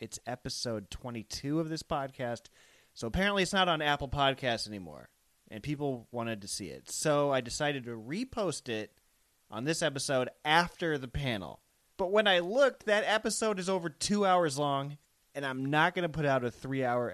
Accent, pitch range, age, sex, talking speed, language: American, 120-175 Hz, 30-49, male, 180 wpm, English